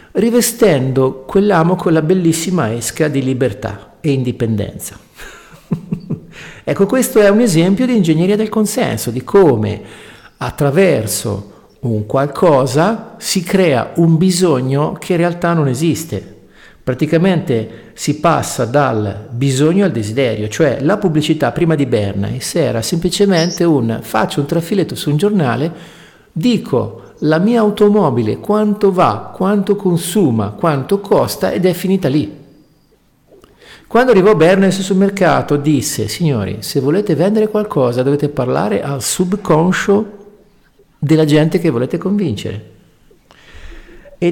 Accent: native